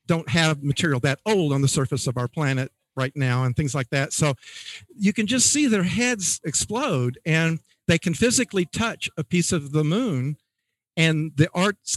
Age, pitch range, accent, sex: 50-69, 130-175 Hz, American, male